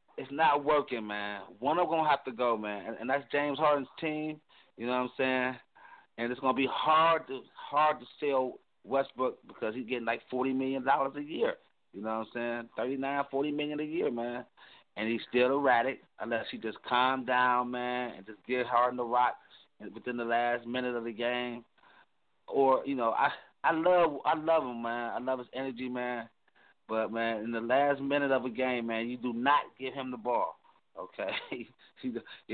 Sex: male